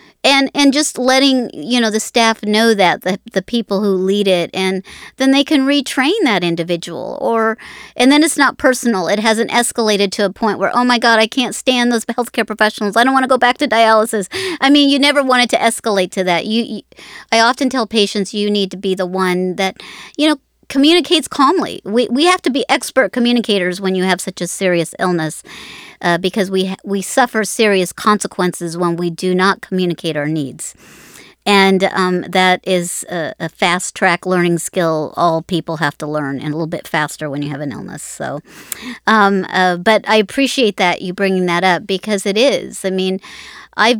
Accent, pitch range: American, 185-250 Hz